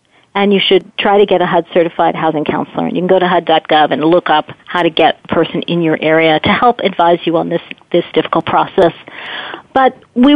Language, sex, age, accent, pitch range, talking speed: English, female, 50-69, American, 180-245 Hz, 215 wpm